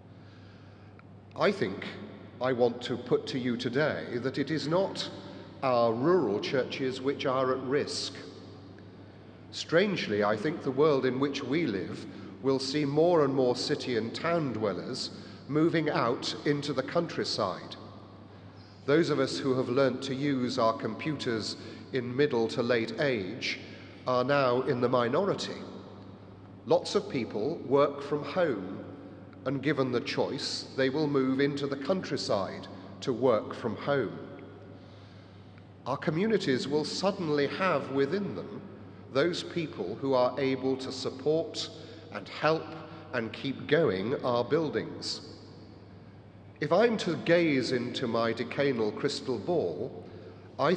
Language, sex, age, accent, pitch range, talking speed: English, male, 40-59, British, 100-145 Hz, 135 wpm